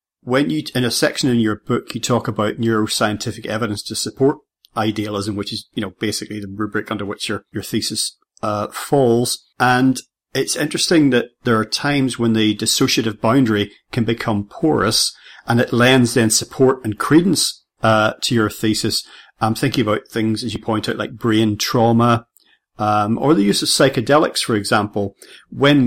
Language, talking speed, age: English, 175 wpm, 40-59